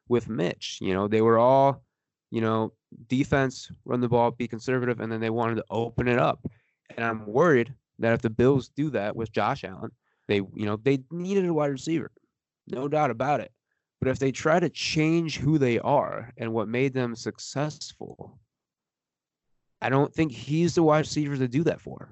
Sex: male